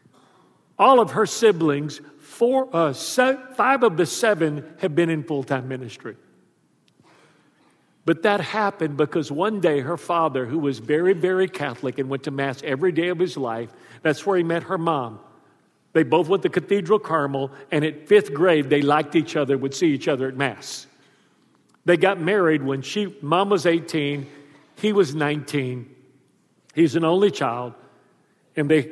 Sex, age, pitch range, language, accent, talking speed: male, 50-69, 145-190 Hz, English, American, 165 wpm